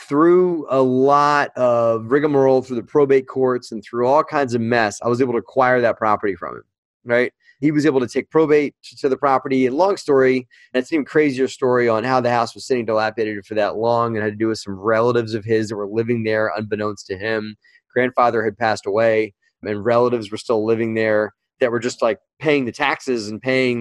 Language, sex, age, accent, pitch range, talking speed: English, male, 20-39, American, 115-135 Hz, 220 wpm